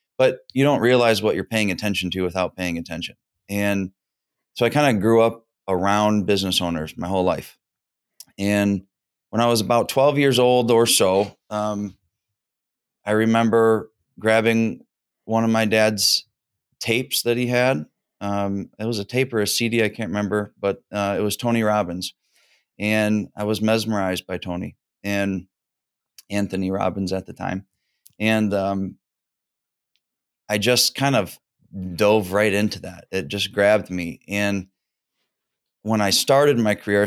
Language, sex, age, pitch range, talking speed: English, male, 30-49, 95-115 Hz, 155 wpm